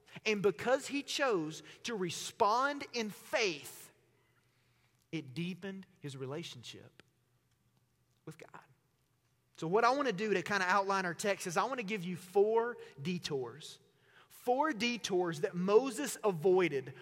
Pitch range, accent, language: 155-220 Hz, American, English